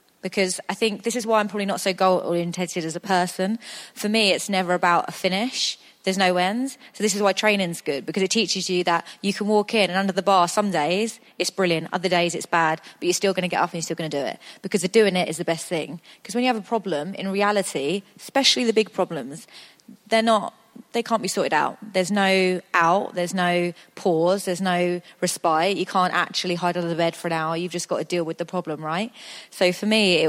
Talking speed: 245 wpm